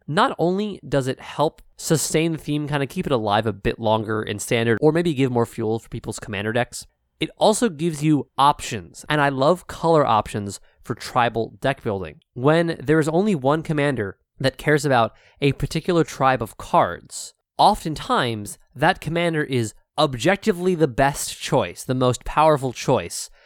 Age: 20-39